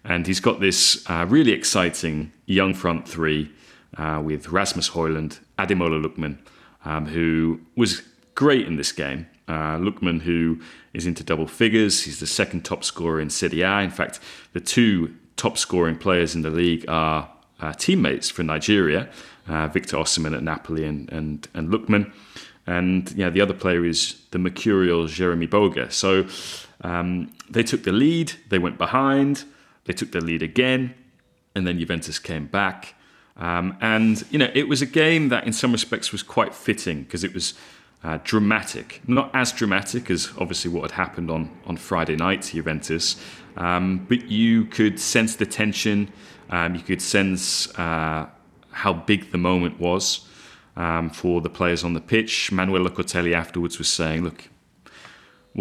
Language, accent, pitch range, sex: English, British, 80-100 Hz, male